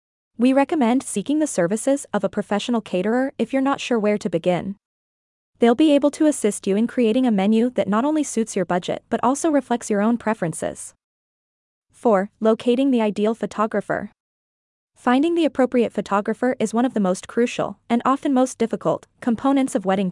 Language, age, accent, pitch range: English, 20-39, American, 195-255 Hz